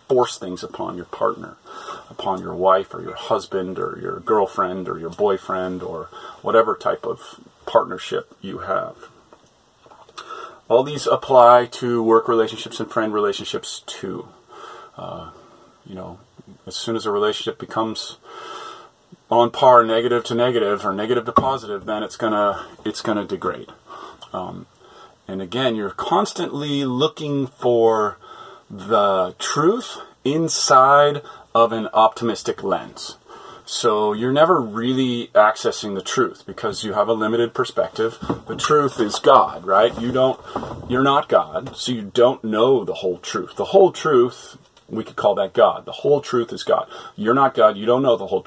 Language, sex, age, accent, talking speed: English, male, 30-49, American, 155 wpm